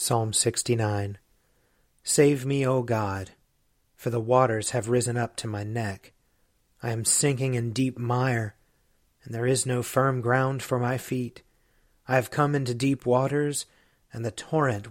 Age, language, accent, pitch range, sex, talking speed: 40-59, English, American, 115-140 Hz, male, 155 wpm